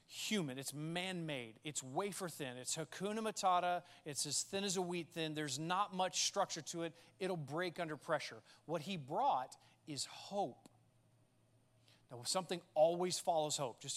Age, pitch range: 30-49, 130-175 Hz